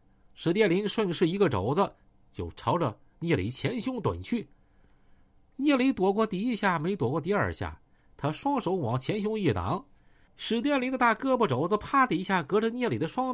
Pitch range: 155-245 Hz